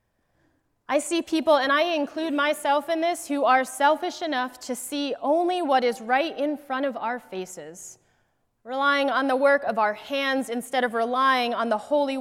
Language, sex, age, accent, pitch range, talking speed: English, female, 30-49, American, 230-280 Hz, 180 wpm